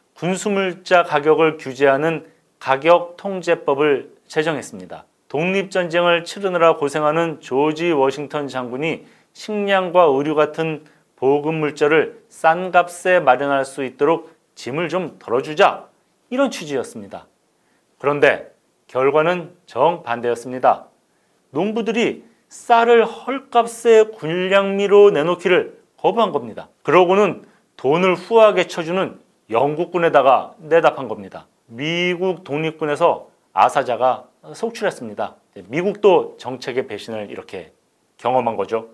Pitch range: 140-195 Hz